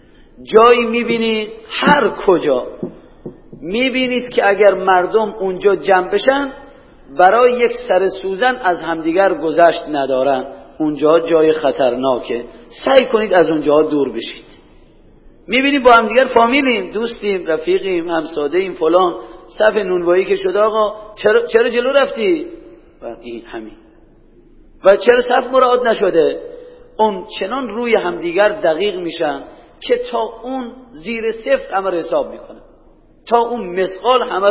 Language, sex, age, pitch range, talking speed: Persian, male, 40-59, 180-250 Hz, 125 wpm